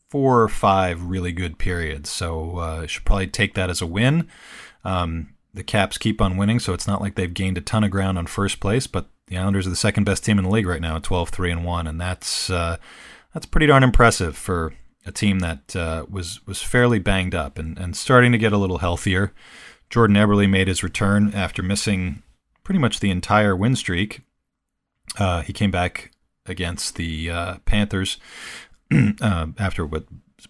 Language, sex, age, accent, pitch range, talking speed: English, male, 40-59, American, 85-105 Hz, 195 wpm